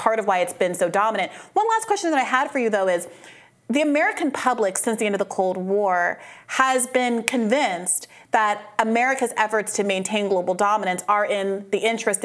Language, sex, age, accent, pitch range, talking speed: English, female, 30-49, American, 185-235 Hz, 200 wpm